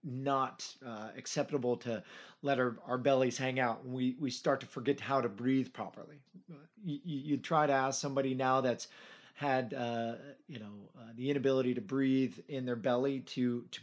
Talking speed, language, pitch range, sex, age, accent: 180 wpm, English, 120-145 Hz, male, 30-49, American